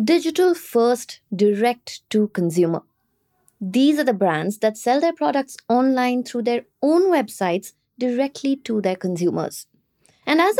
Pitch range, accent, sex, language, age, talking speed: 200-290 Hz, Indian, female, English, 20-39, 135 wpm